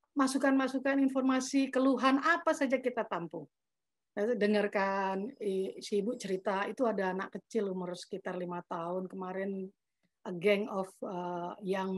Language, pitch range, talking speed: Indonesian, 190-225 Hz, 120 wpm